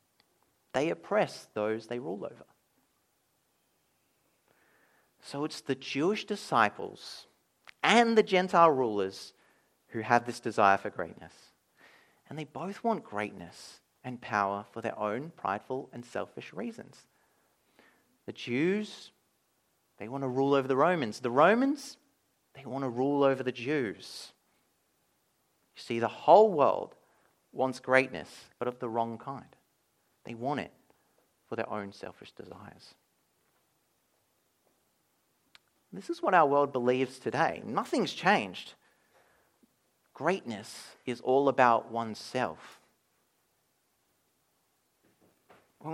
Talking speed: 115 wpm